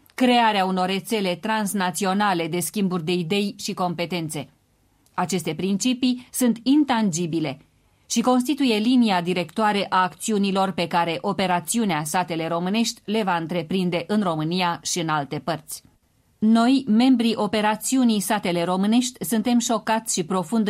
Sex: female